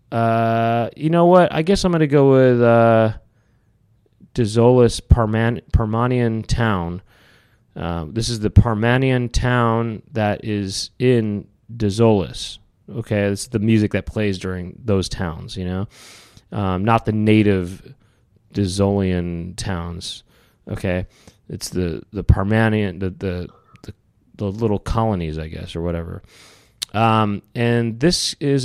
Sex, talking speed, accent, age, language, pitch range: male, 130 wpm, American, 30-49, English, 95-120 Hz